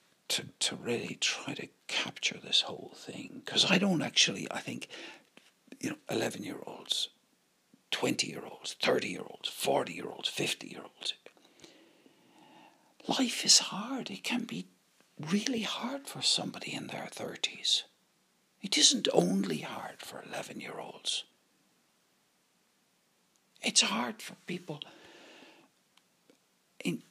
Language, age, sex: English, 60-79, male